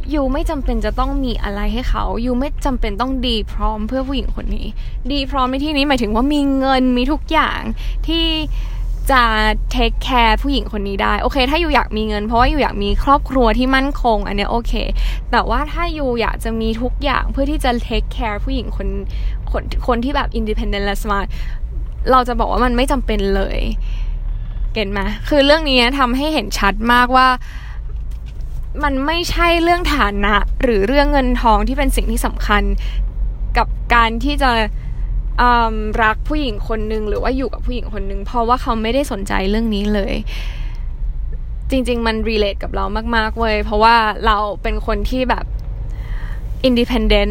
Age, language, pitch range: 10-29, Thai, 210-270 Hz